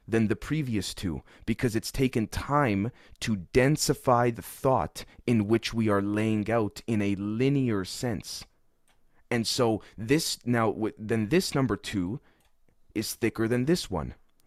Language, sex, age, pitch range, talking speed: English, male, 30-49, 100-125 Hz, 145 wpm